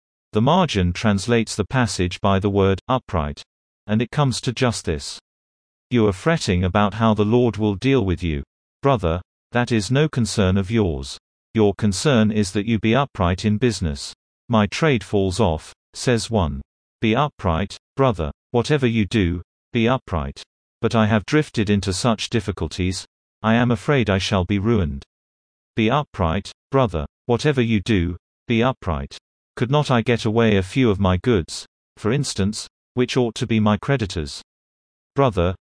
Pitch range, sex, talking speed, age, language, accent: 85-120 Hz, male, 165 wpm, 40-59, English, British